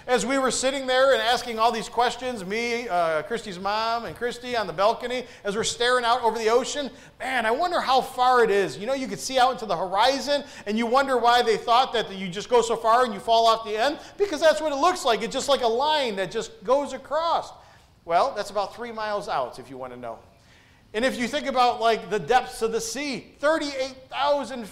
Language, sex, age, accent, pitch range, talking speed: English, male, 40-59, American, 220-280 Hz, 240 wpm